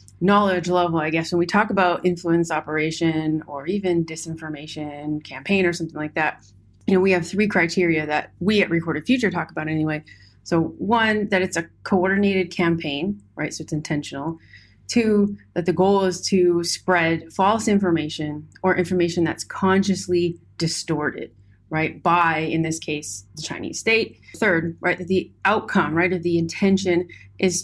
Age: 30-49